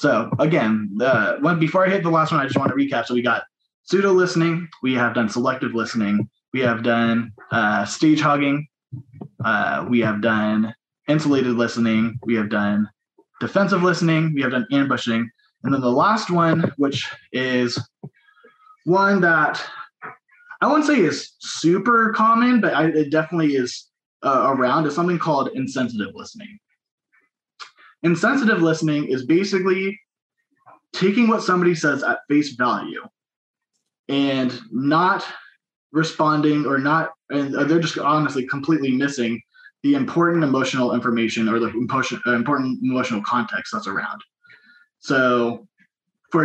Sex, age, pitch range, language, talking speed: male, 20-39, 125-185 Hz, English, 140 wpm